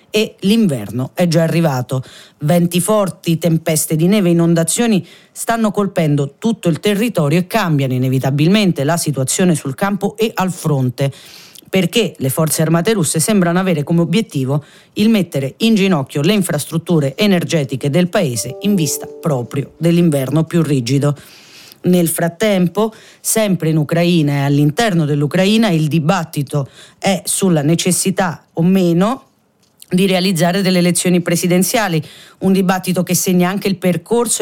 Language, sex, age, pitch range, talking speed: Italian, female, 40-59, 155-200 Hz, 135 wpm